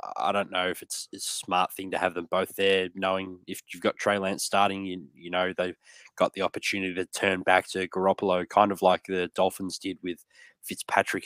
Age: 20-39